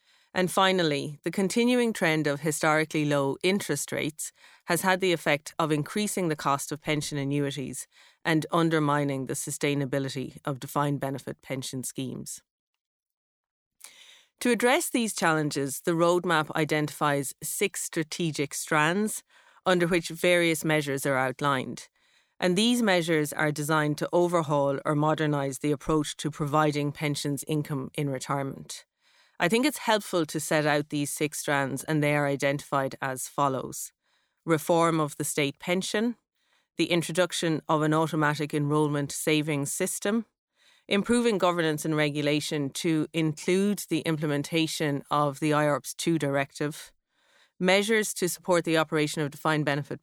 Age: 30-49